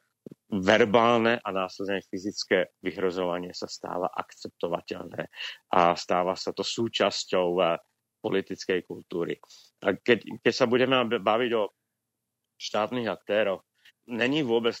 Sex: male